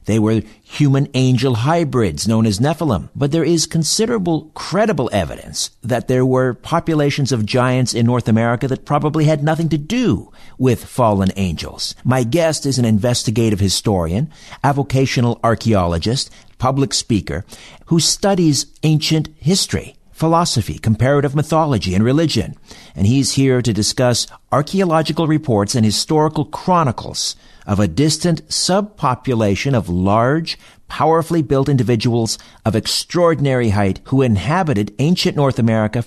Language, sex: English, male